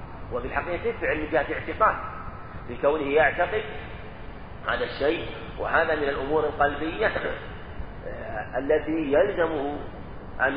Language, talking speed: Arabic, 90 wpm